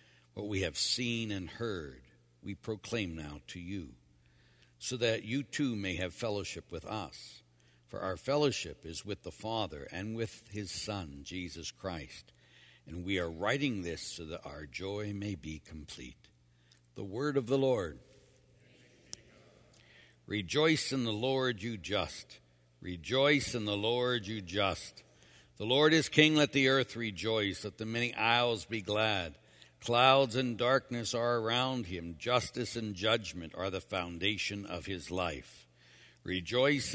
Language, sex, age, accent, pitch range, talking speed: English, male, 60-79, American, 90-125 Hz, 150 wpm